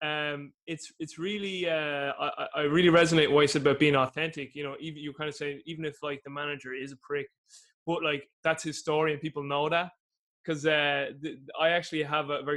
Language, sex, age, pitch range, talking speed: English, male, 20-39, 145-160 Hz, 215 wpm